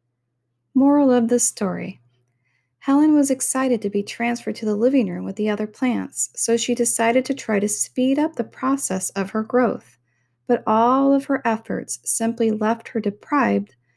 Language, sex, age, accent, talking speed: English, female, 40-59, American, 170 wpm